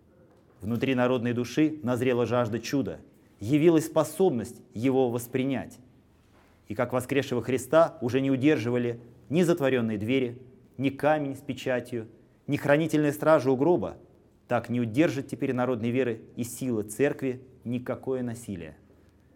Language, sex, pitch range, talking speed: Russian, male, 115-145 Hz, 125 wpm